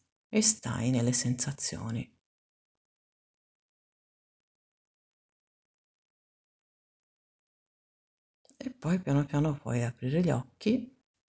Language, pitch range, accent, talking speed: Italian, 120-185 Hz, native, 65 wpm